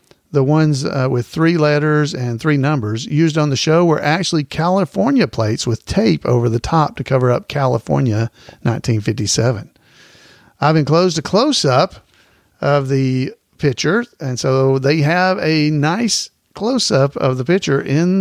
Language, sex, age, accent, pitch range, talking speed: English, male, 50-69, American, 135-175 Hz, 150 wpm